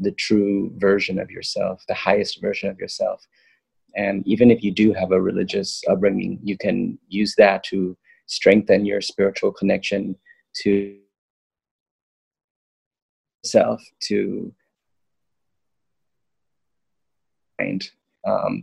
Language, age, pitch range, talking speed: English, 30-49, 95-110 Hz, 105 wpm